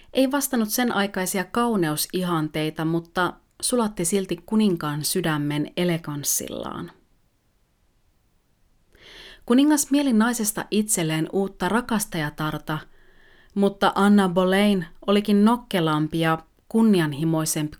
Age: 30-49